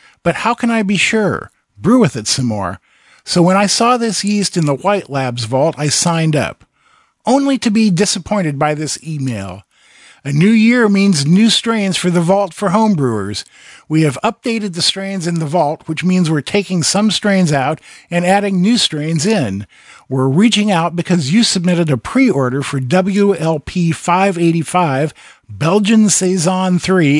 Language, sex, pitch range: English, male, 150-200 Hz